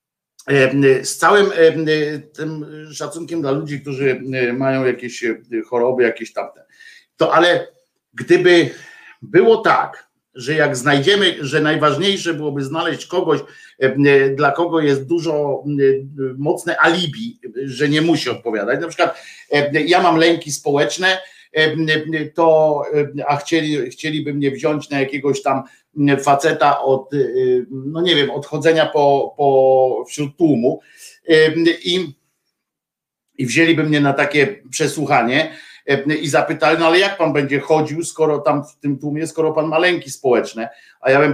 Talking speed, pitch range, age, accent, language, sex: 130 wpm, 140-170 Hz, 50-69, native, Polish, male